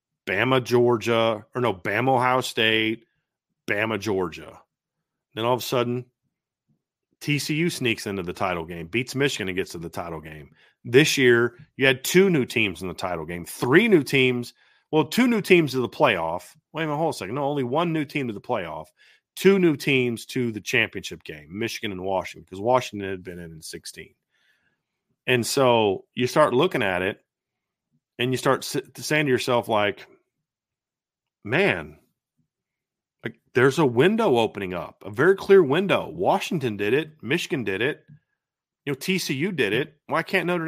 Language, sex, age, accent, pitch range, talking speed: English, male, 30-49, American, 115-155 Hz, 175 wpm